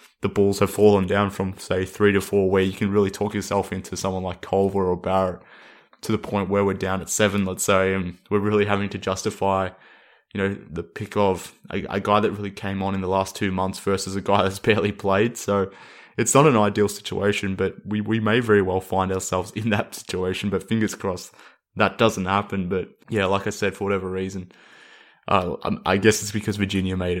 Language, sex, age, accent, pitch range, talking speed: English, male, 20-39, Australian, 95-105 Hz, 220 wpm